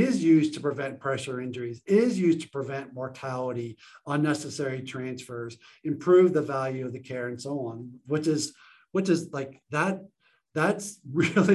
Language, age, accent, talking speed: English, 50-69, American, 155 wpm